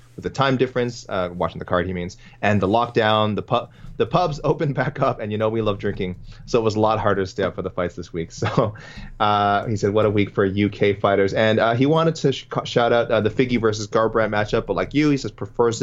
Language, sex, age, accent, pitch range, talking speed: English, male, 30-49, American, 100-130 Hz, 265 wpm